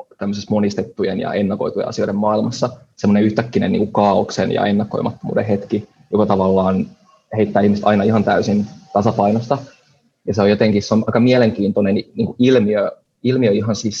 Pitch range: 100-110 Hz